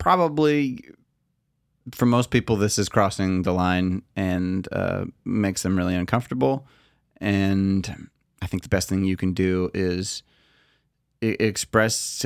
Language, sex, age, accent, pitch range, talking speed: English, male, 30-49, American, 95-115 Hz, 125 wpm